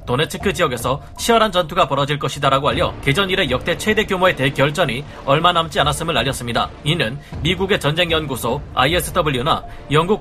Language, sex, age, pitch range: Korean, male, 40-59, 140-180 Hz